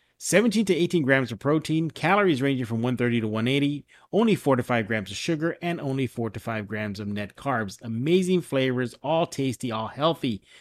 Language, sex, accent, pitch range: English, male, American, 120-160 Hz